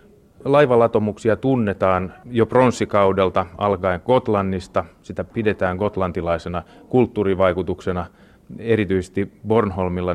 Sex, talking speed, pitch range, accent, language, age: male, 70 wpm, 90-105 Hz, native, Finnish, 30-49